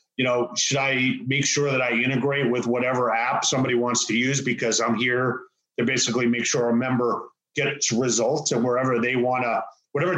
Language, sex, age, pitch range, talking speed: English, male, 30-49, 125-155 Hz, 195 wpm